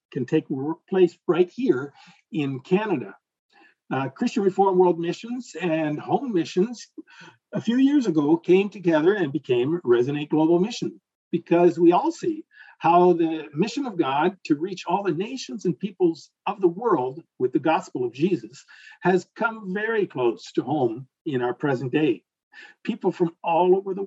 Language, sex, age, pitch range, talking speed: English, male, 50-69, 160-225 Hz, 160 wpm